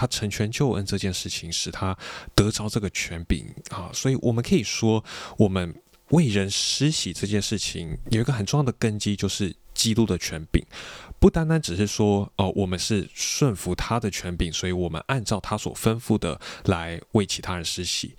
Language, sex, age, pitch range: Chinese, male, 20-39, 90-115 Hz